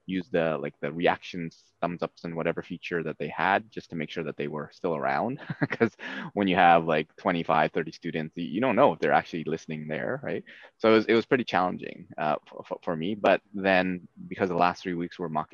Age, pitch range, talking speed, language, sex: 20-39, 80-95 Hz, 230 wpm, English, male